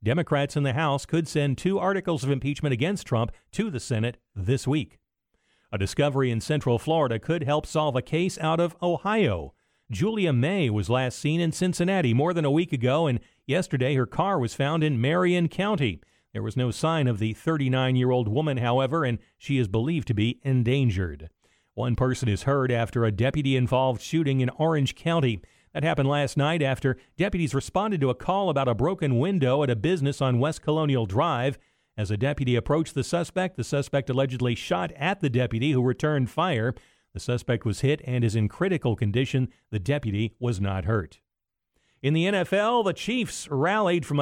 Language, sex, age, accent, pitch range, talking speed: English, male, 40-59, American, 125-165 Hz, 185 wpm